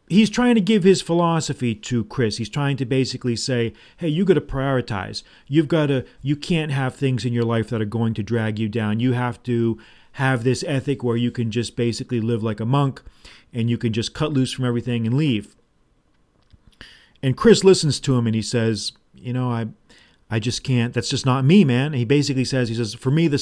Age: 40-59